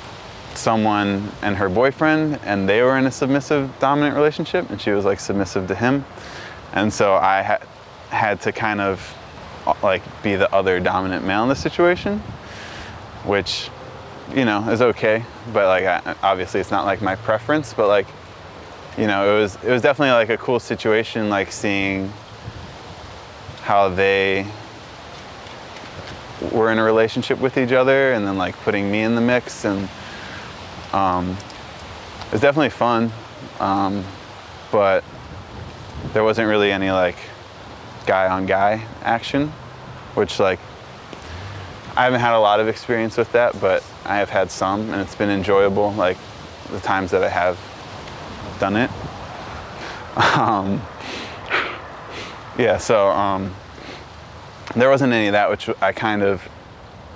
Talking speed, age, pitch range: 145 wpm, 20-39, 95-120 Hz